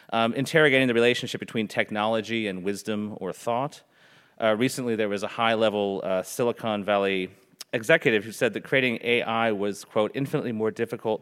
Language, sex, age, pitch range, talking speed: English, male, 30-49, 105-130 Hz, 155 wpm